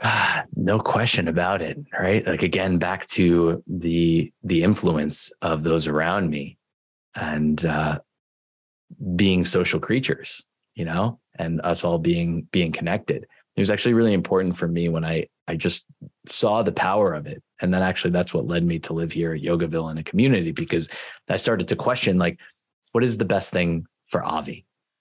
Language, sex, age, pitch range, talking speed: English, male, 20-39, 85-100 Hz, 180 wpm